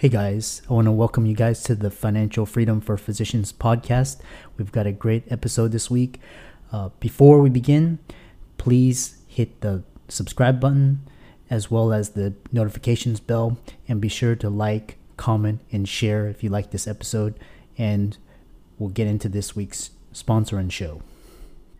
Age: 30-49